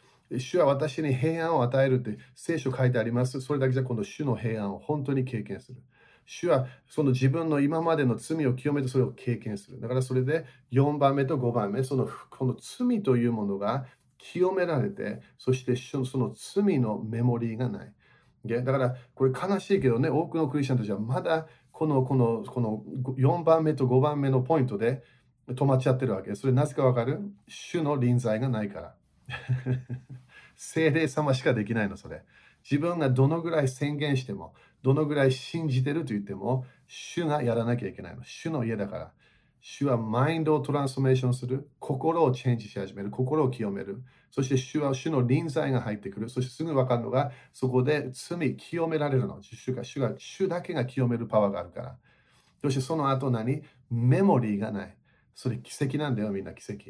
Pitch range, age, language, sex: 120-145 Hz, 40-59, Japanese, male